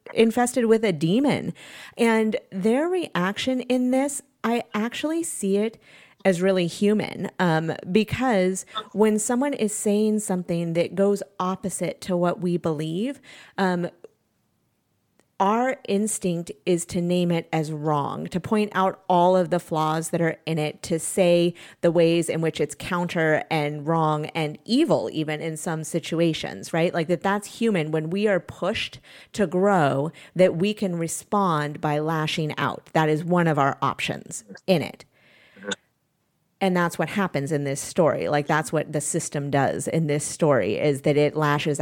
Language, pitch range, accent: English, 155-210 Hz, American